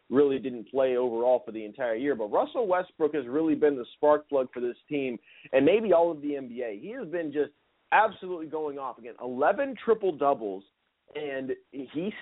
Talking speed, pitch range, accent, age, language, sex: 185 wpm, 135-170 Hz, American, 30-49, English, male